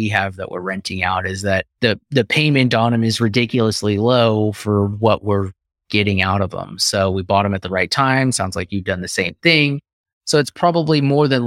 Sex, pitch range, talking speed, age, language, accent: male, 105-135 Hz, 220 wpm, 30-49, English, American